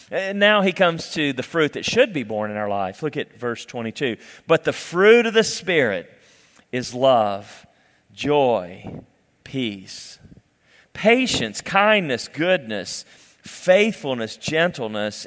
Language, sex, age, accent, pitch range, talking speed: English, male, 40-59, American, 120-185 Hz, 130 wpm